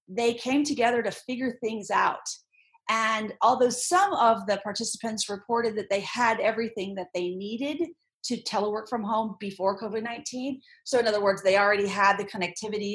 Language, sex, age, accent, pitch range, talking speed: English, female, 40-59, American, 195-245 Hz, 165 wpm